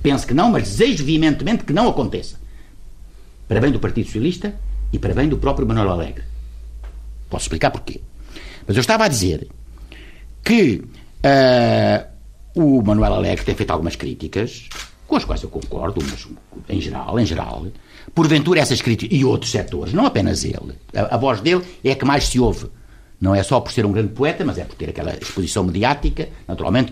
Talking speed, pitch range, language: 185 wpm, 90-135 Hz, Portuguese